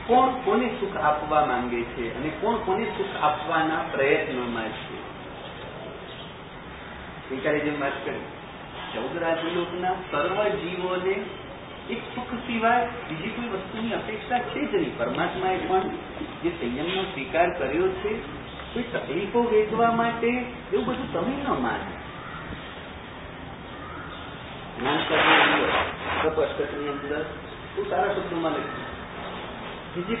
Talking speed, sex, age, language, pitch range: 85 wpm, male, 40-59, English, 170-230 Hz